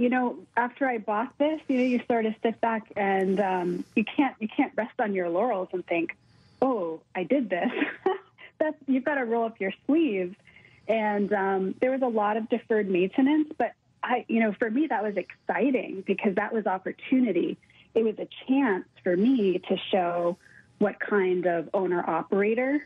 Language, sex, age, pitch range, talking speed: English, female, 30-49, 185-245 Hz, 190 wpm